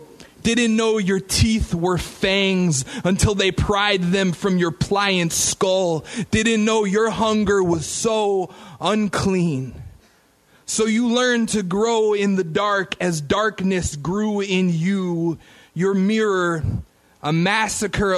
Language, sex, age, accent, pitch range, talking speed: English, male, 20-39, American, 185-225 Hz, 125 wpm